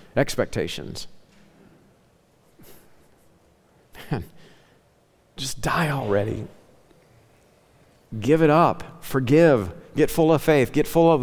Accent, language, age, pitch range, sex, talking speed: American, English, 50-69, 110-140 Hz, male, 85 wpm